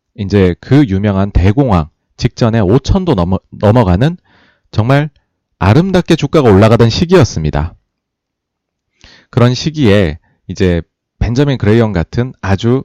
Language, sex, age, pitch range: Korean, male, 30-49, 95-140 Hz